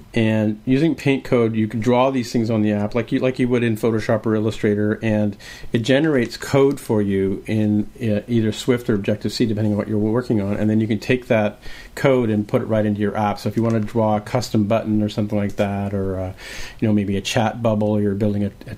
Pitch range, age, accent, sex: 105-125 Hz, 40-59, American, male